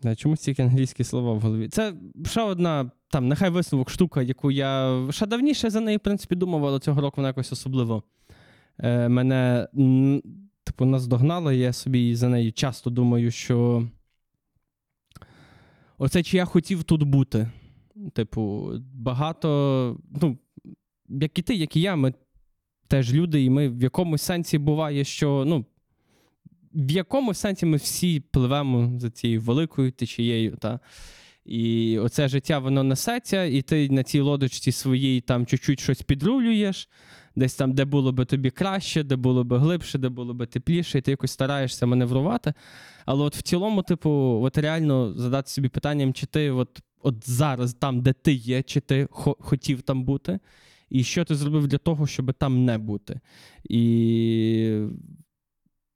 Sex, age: male, 20-39